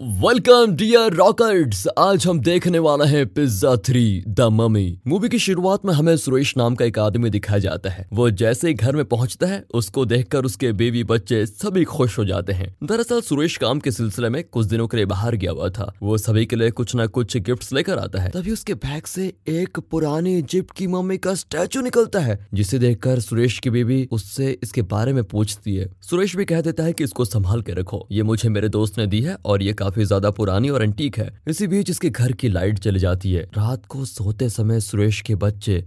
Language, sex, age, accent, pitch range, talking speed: Hindi, male, 20-39, native, 105-150 Hz, 215 wpm